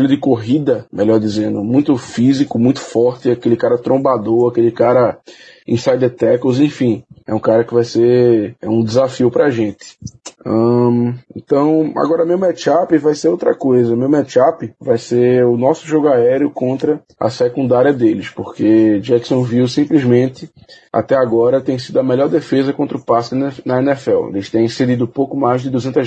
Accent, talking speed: Brazilian, 165 wpm